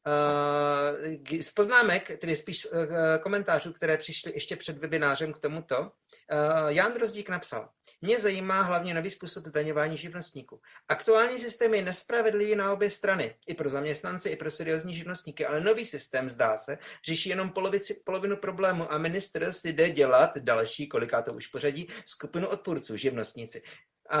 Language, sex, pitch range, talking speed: Slovak, male, 145-185 Hz, 150 wpm